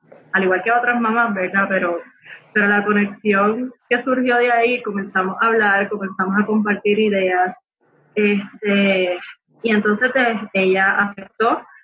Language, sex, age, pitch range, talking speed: Spanish, female, 20-39, 195-225 Hz, 135 wpm